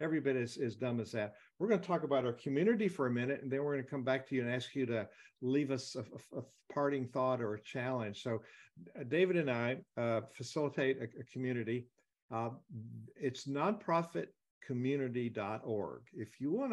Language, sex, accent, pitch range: English, male, American, 120-155 Hz